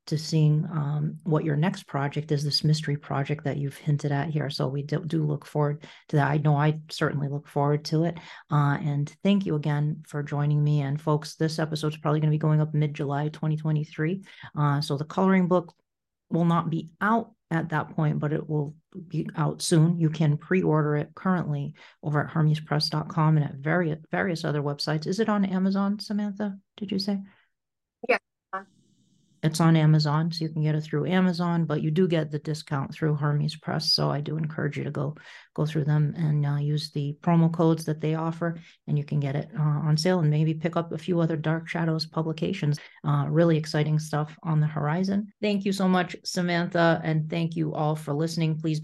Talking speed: 205 wpm